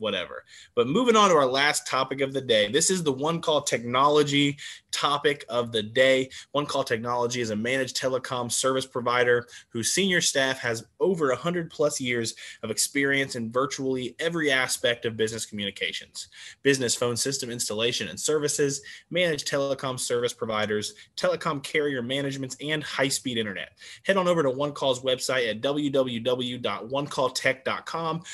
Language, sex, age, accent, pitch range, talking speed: English, male, 20-39, American, 120-145 Hz, 155 wpm